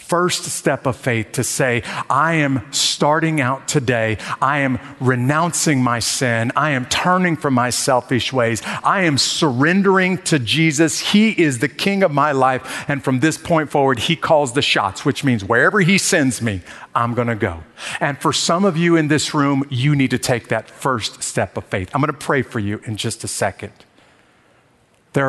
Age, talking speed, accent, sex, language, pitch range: 50-69, 195 wpm, American, male, English, 115-150 Hz